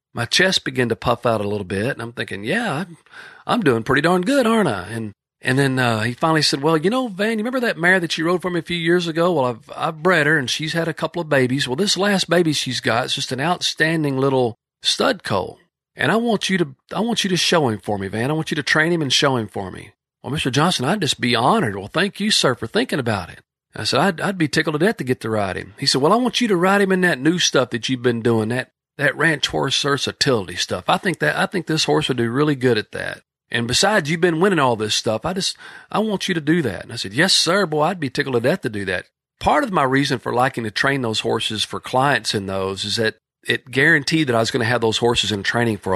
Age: 40-59